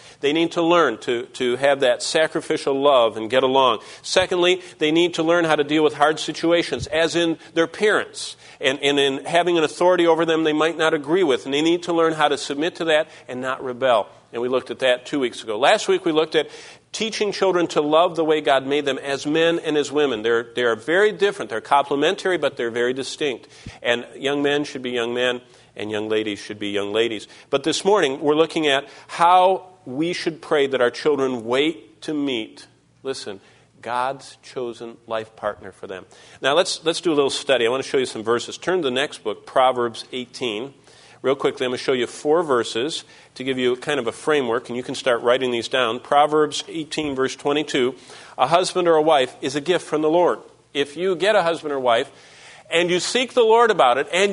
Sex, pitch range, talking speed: male, 130-170 Hz, 225 wpm